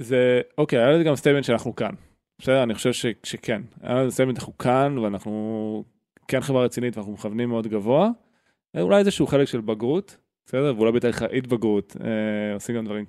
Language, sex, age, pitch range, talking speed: Hebrew, male, 20-39, 110-130 Hz, 185 wpm